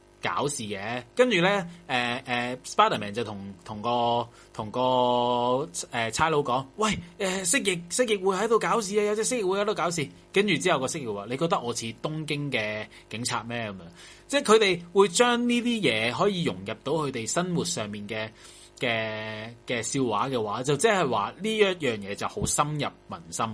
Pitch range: 115-190 Hz